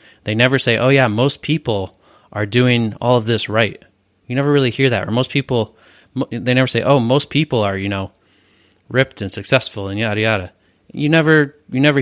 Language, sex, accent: English, male, American